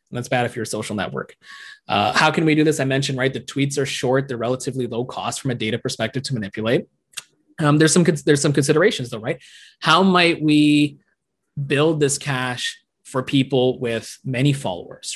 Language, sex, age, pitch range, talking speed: English, male, 20-39, 125-155 Hz, 190 wpm